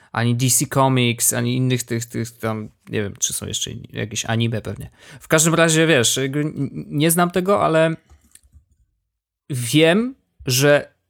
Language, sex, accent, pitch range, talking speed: Polish, male, native, 120-150 Hz, 145 wpm